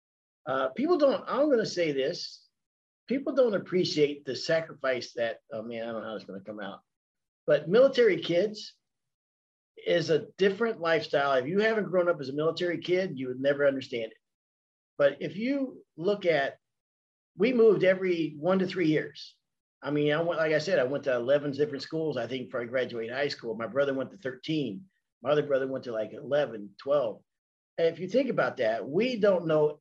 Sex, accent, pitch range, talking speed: male, American, 130-190 Hz, 200 wpm